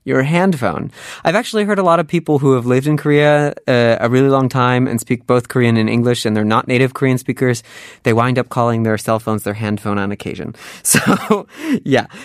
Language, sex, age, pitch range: Korean, male, 20-39, 115-145 Hz